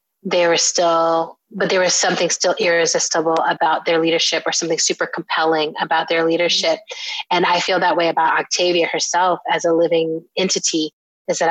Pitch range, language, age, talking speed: 165-185 Hz, English, 30-49, 170 wpm